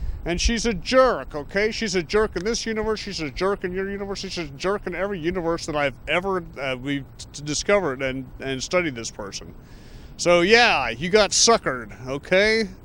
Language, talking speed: English, 190 wpm